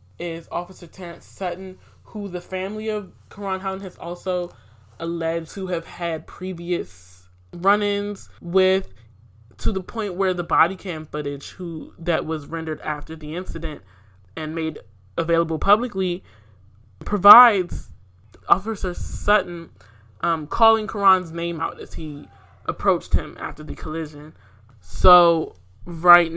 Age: 20-39